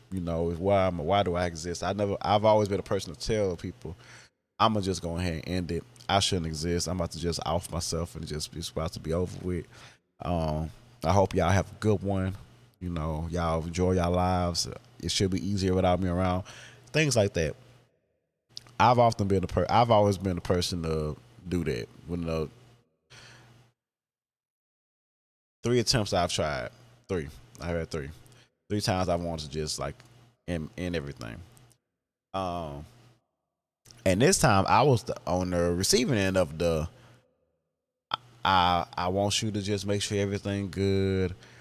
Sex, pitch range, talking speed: male, 85-105 Hz, 175 wpm